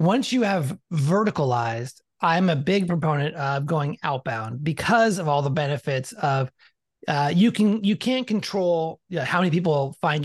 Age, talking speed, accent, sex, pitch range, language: 30-49, 180 wpm, American, male, 140-180 Hz, English